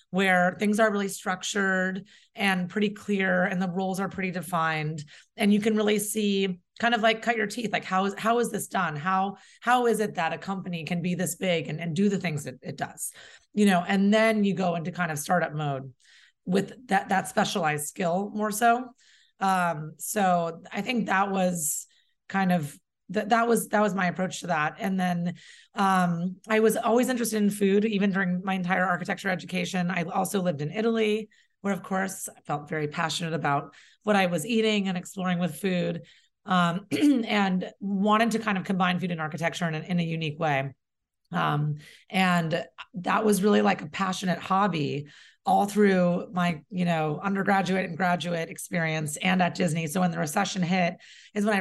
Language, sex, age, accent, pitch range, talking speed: English, female, 30-49, American, 175-205 Hz, 195 wpm